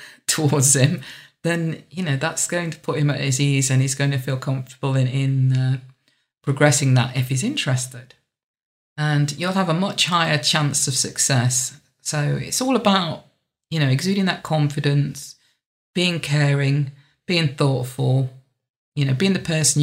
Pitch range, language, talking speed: 135-160 Hz, English, 165 wpm